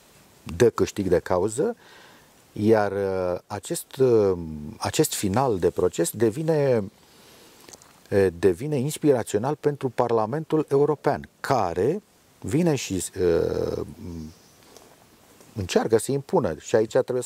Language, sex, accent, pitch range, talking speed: Romanian, male, native, 90-130 Hz, 100 wpm